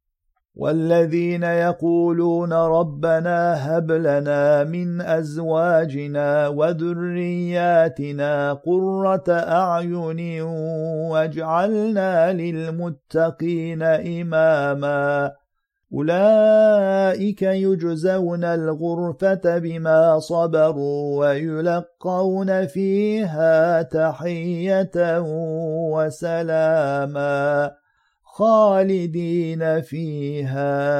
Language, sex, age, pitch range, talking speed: Turkish, male, 50-69, 155-175 Hz, 45 wpm